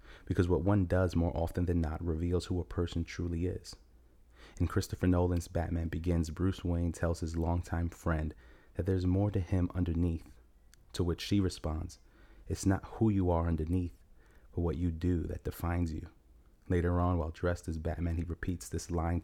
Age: 30-49